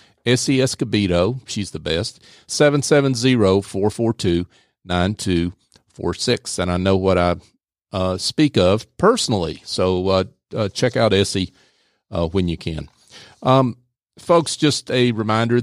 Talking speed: 155 wpm